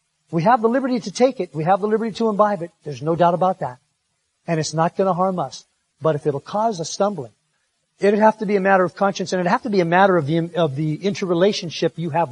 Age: 50-69